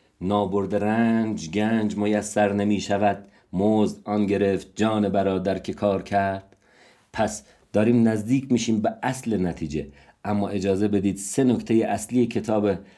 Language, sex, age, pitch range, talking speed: Persian, male, 50-69, 100-120 Hz, 140 wpm